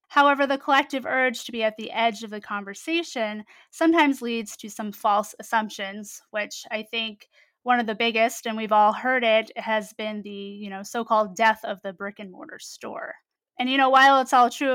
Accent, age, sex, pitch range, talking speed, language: American, 20-39, female, 210-275 Hz, 205 wpm, English